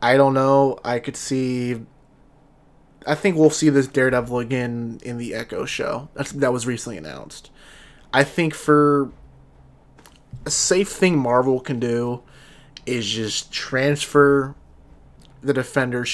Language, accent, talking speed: English, American, 130 wpm